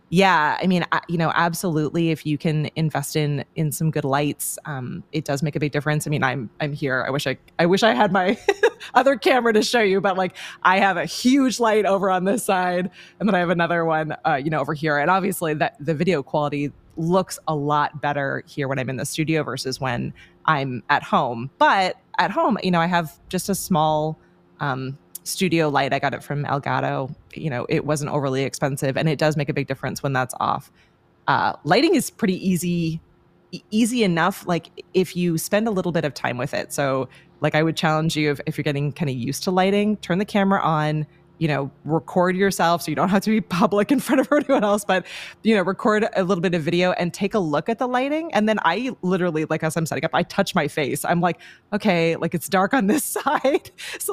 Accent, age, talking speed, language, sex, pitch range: American, 20-39, 235 wpm, English, female, 150-190 Hz